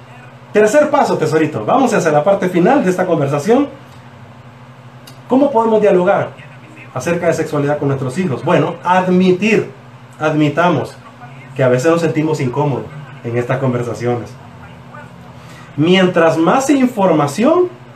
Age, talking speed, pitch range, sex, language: 30-49, 120 wpm, 125-170 Hz, male, Spanish